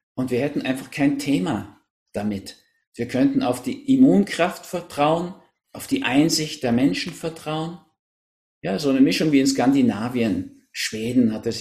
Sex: male